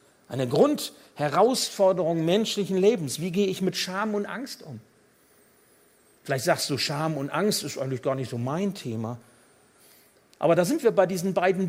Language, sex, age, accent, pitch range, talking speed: German, male, 60-79, German, 155-225 Hz, 165 wpm